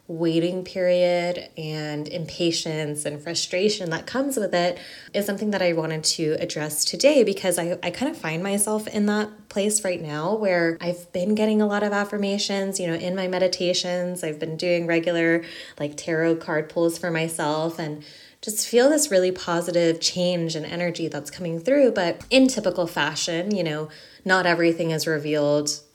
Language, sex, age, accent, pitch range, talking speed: English, female, 20-39, American, 155-185 Hz, 175 wpm